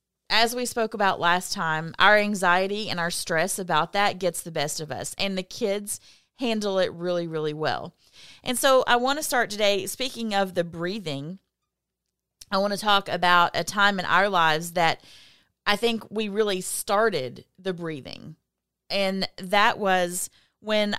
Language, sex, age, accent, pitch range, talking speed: English, female, 30-49, American, 170-200 Hz, 170 wpm